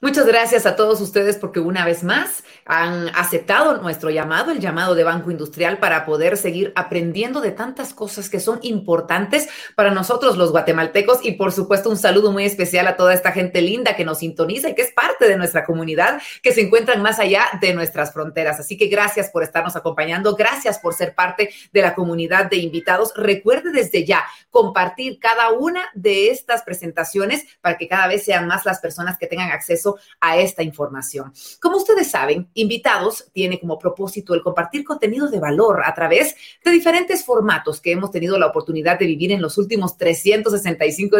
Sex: female